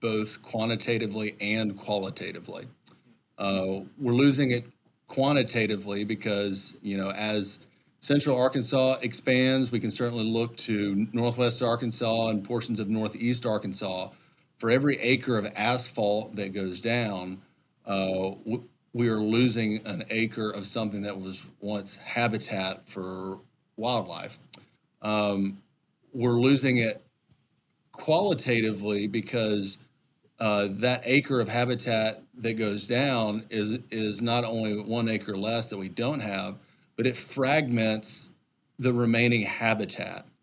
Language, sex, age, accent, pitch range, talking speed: English, male, 40-59, American, 105-120 Hz, 120 wpm